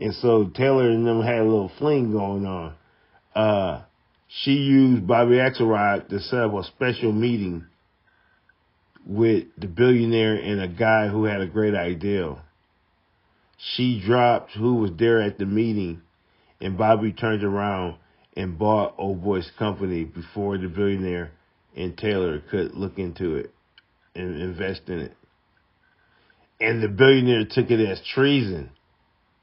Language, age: English, 40-59